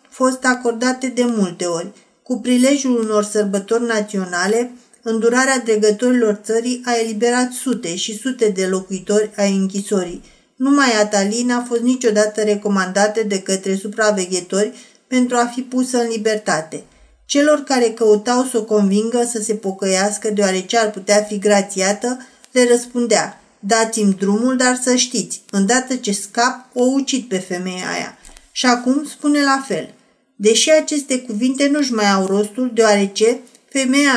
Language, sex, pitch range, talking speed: Romanian, female, 210-250 Hz, 140 wpm